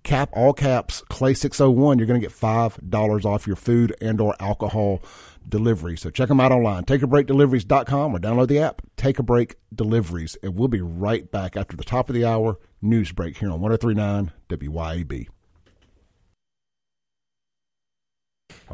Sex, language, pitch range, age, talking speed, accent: male, English, 100-130 Hz, 50-69, 155 wpm, American